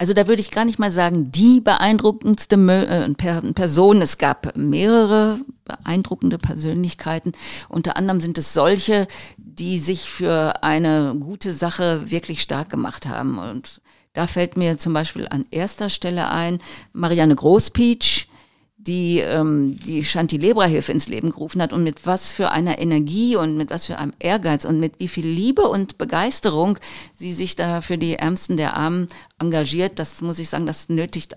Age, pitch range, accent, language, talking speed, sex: 50-69, 155-190 Hz, German, German, 165 wpm, female